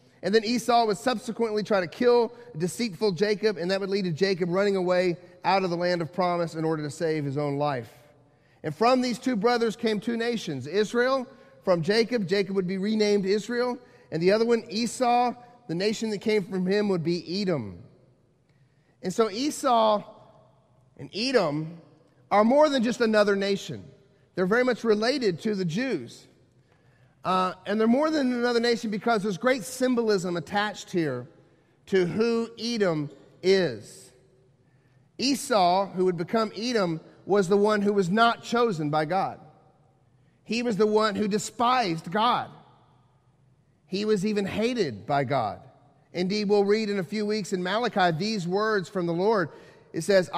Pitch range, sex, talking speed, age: 160-225 Hz, male, 165 wpm, 40-59